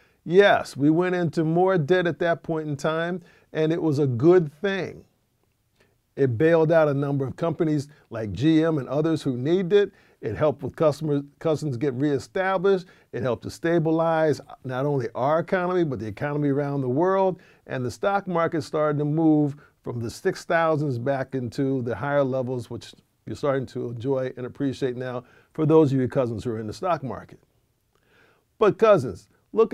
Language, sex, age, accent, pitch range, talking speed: English, male, 50-69, American, 135-170 Hz, 180 wpm